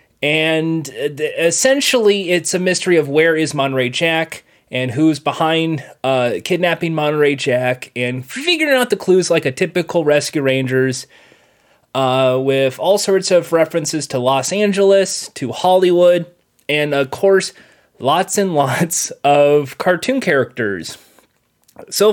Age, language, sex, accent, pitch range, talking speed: 30-49, English, male, American, 130-180 Hz, 130 wpm